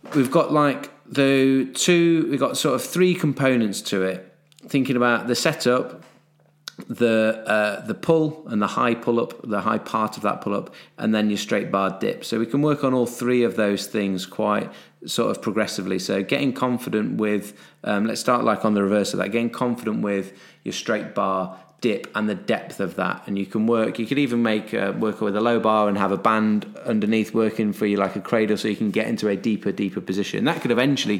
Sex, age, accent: male, 30-49, British